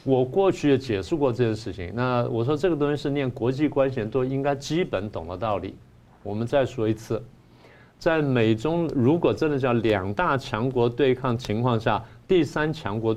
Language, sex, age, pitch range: Chinese, male, 50-69, 105-135 Hz